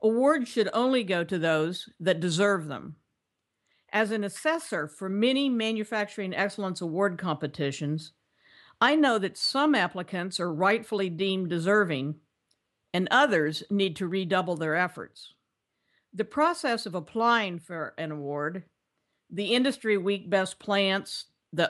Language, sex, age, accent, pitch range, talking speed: English, female, 50-69, American, 175-220 Hz, 130 wpm